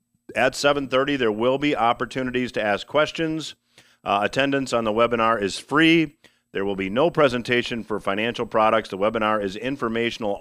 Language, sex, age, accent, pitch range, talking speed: English, male, 50-69, American, 110-135 Hz, 160 wpm